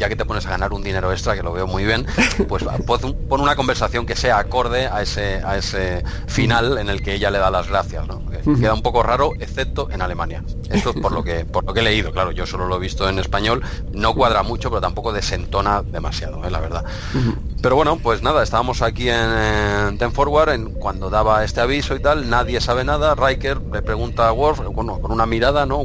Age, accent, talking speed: 30-49, Spanish, 230 wpm